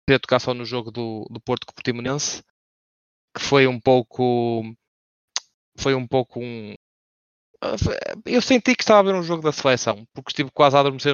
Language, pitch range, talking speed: English, 120-150 Hz, 185 wpm